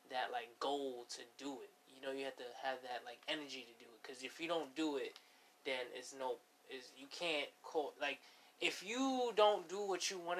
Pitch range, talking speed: 135-170 Hz, 225 wpm